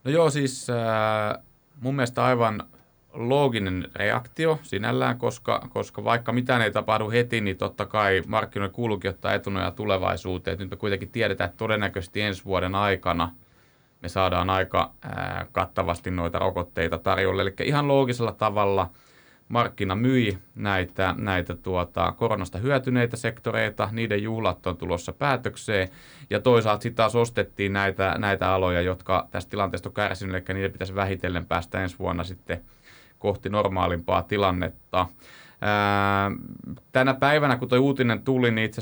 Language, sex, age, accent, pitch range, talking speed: Finnish, male, 30-49, native, 95-115 Hz, 140 wpm